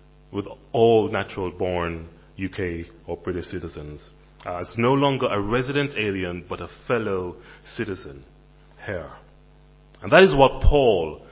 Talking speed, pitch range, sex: 125 wpm, 95-140 Hz, male